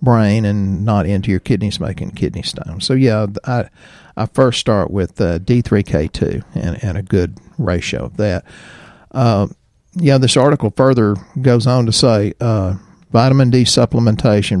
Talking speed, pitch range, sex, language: 155 wpm, 100-130 Hz, male, English